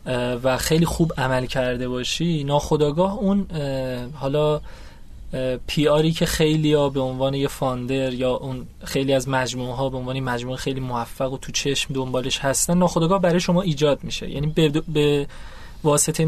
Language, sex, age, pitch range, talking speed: Persian, male, 20-39, 135-175 Hz, 155 wpm